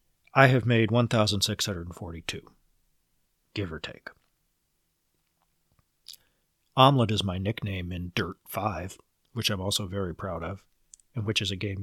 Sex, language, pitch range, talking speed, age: male, English, 95-125 Hz, 125 wpm, 40-59